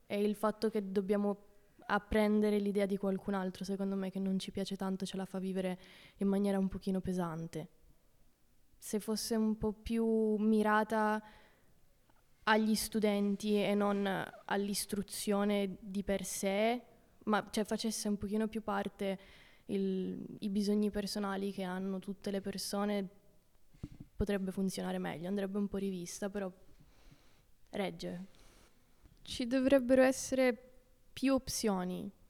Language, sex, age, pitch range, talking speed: Italian, female, 20-39, 190-215 Hz, 130 wpm